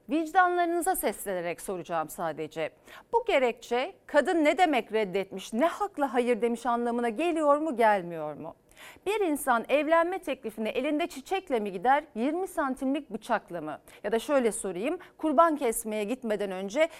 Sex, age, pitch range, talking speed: female, 40-59, 220-310 Hz, 140 wpm